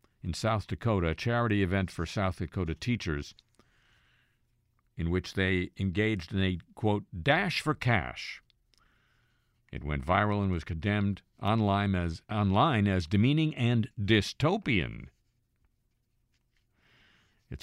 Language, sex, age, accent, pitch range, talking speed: English, male, 50-69, American, 85-115 Hz, 115 wpm